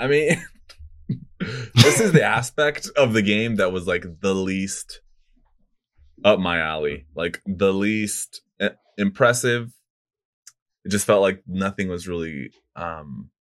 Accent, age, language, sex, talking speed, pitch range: American, 20-39, English, male, 130 wpm, 85-110 Hz